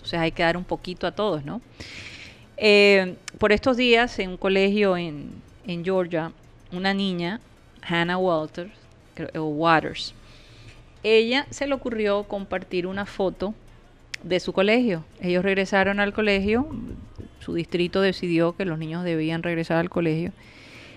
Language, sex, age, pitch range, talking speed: Spanish, female, 30-49, 160-195 Hz, 135 wpm